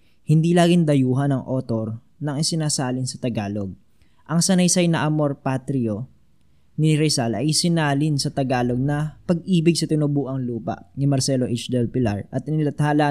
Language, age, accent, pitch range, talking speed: Filipino, 20-39, native, 125-155 Hz, 145 wpm